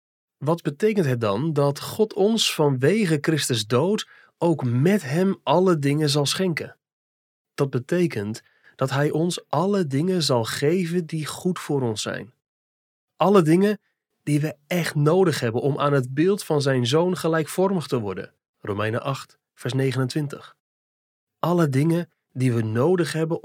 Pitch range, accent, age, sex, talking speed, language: 125-175 Hz, Dutch, 30-49, male, 150 wpm, Dutch